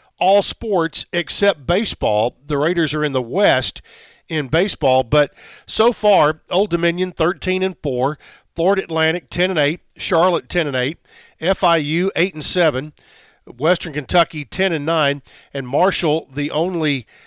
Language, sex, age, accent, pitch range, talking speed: English, male, 50-69, American, 140-180 Hz, 145 wpm